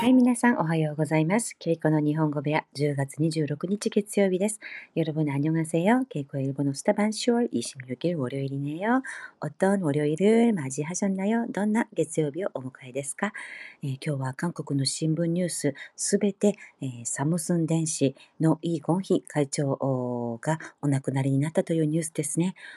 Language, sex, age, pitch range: Korean, female, 40-59, 140-195 Hz